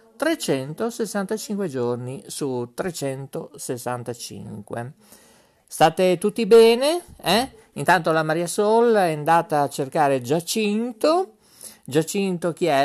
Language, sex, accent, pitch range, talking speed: Italian, male, native, 145-230 Hz, 95 wpm